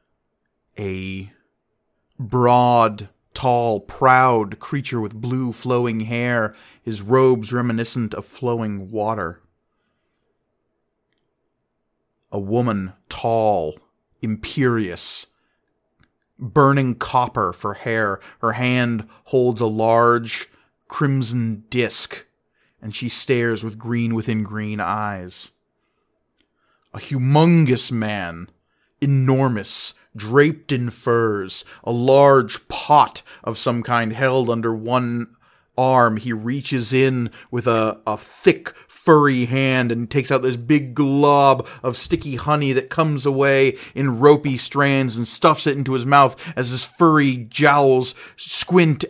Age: 30-49